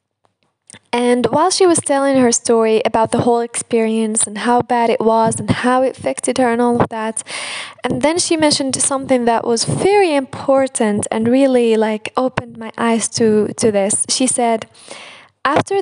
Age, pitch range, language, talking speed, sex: 10-29, 215-260 Hz, English, 175 wpm, female